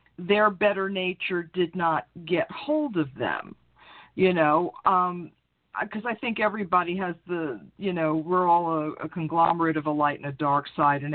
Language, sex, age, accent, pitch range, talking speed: English, female, 50-69, American, 150-185 Hz, 180 wpm